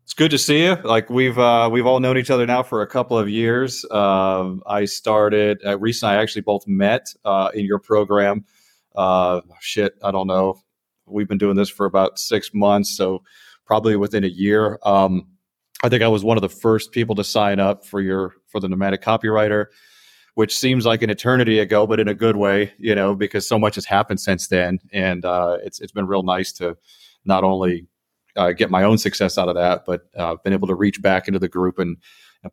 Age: 30-49